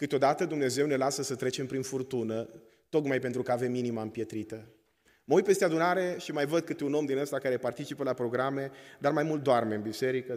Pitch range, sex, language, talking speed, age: 125-170 Hz, male, Romanian, 210 wpm, 30-49